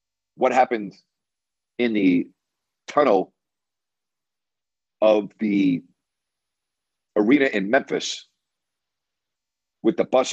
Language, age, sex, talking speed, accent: English, 50-69, male, 75 wpm, American